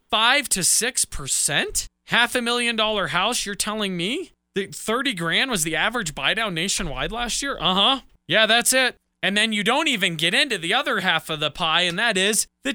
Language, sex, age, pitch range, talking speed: English, male, 20-39, 155-210 Hz, 205 wpm